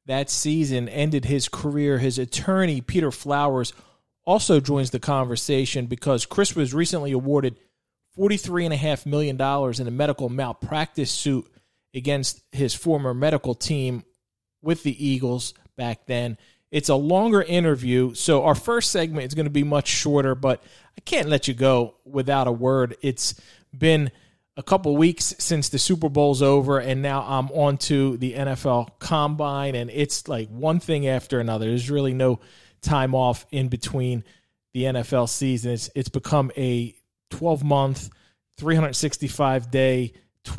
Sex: male